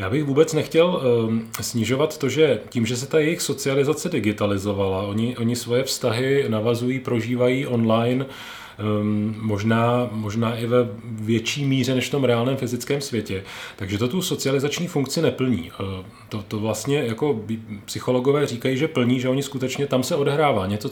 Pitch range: 110-140 Hz